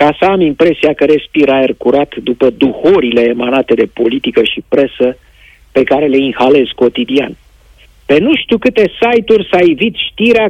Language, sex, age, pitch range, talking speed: Romanian, male, 50-69, 150-235 Hz, 160 wpm